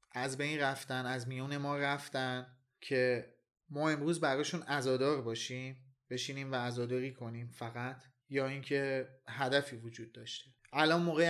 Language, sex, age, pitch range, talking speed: Persian, male, 30-49, 125-145 Hz, 135 wpm